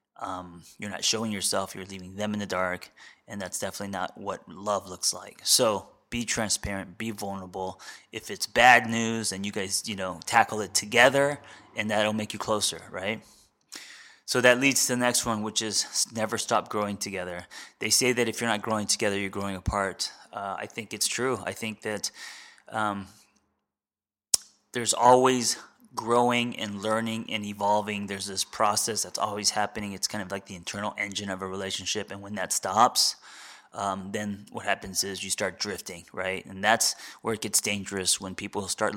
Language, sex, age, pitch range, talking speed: English, male, 20-39, 100-115 Hz, 185 wpm